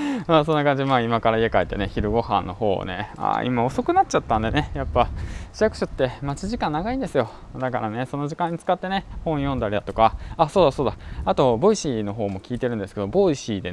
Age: 20-39